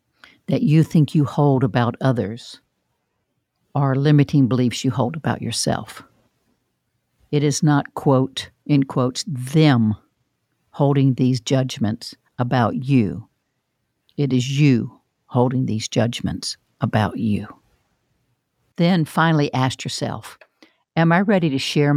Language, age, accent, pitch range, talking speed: English, 60-79, American, 125-150 Hz, 115 wpm